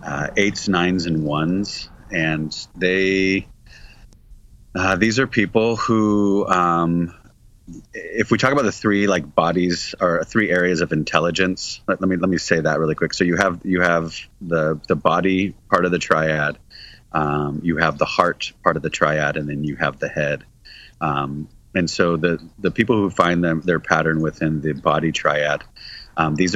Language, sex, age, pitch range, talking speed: English, male, 30-49, 80-95 Hz, 180 wpm